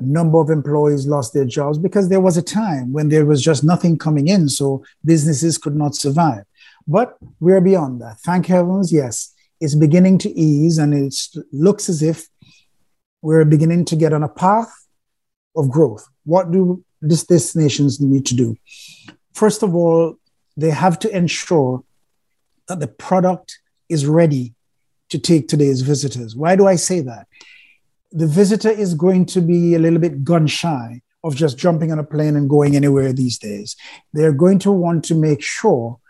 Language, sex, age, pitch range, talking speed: English, male, 50-69, 145-175 Hz, 175 wpm